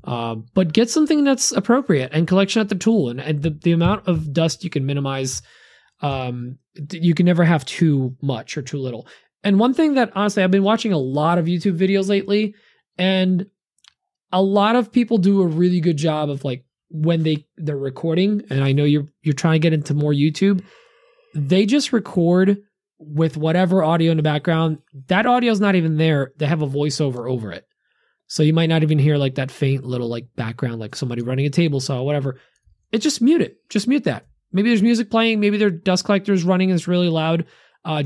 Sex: male